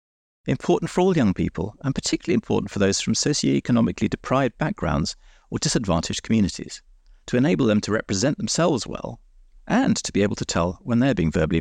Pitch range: 85-120 Hz